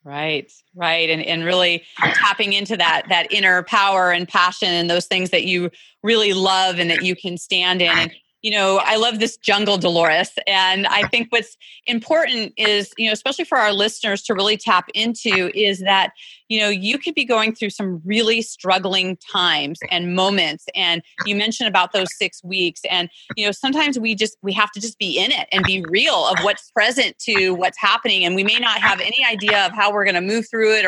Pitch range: 180-230 Hz